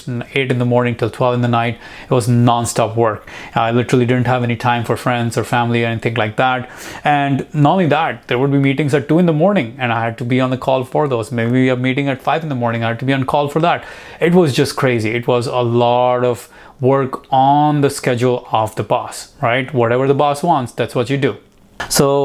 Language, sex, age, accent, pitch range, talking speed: English, male, 30-49, Indian, 120-140 Hz, 250 wpm